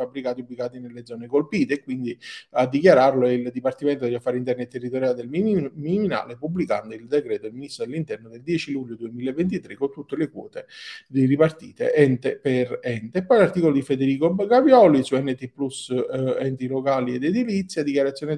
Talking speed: 165 wpm